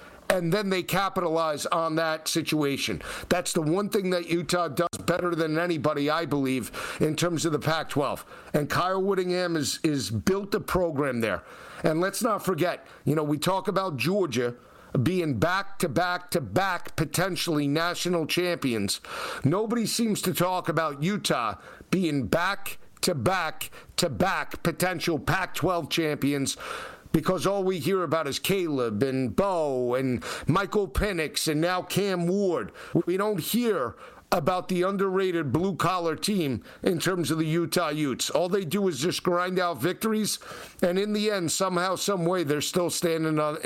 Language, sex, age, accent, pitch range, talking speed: English, male, 50-69, American, 160-195 Hz, 145 wpm